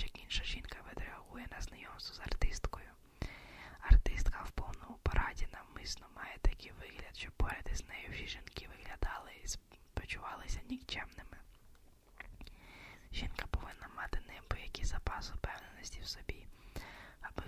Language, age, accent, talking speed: Ukrainian, 20-39, native, 110 wpm